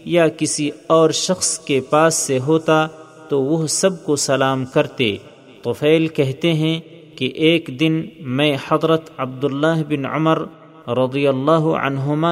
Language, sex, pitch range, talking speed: Urdu, male, 135-160 Hz, 135 wpm